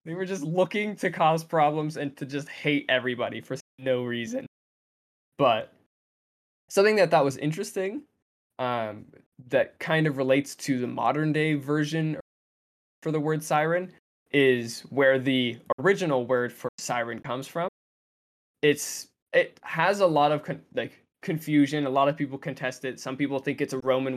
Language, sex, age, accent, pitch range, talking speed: English, male, 20-39, American, 130-155 Hz, 160 wpm